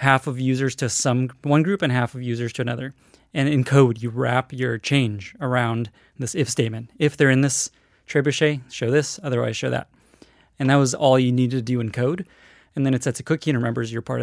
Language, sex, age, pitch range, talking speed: English, male, 20-39, 120-140 Hz, 230 wpm